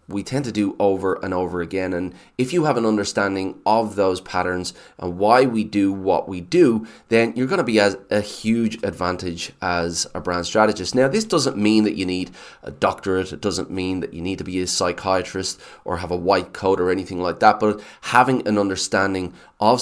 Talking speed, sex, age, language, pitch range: 210 wpm, male, 20-39, English, 95-110 Hz